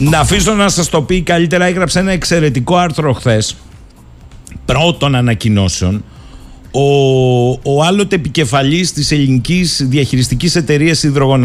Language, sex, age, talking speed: Greek, male, 50-69, 120 wpm